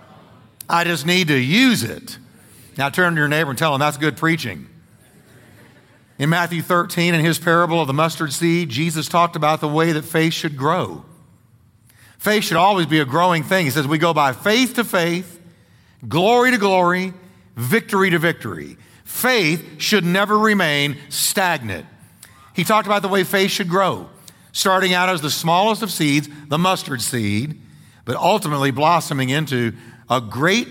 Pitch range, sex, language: 130-180 Hz, male, English